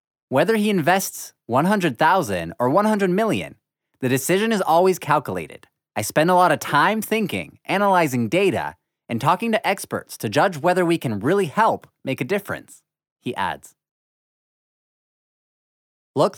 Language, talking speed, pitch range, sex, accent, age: English, 140 wpm, 130-200 Hz, male, American, 20-39